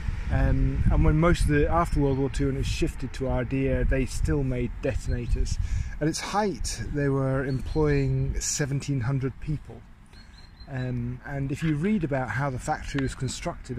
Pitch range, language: 105-135 Hz, English